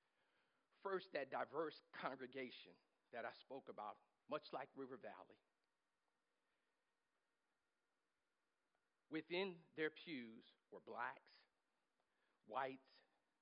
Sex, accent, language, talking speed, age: male, American, English, 80 wpm, 50-69